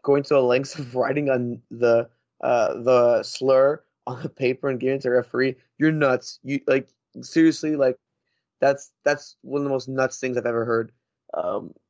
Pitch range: 130-165 Hz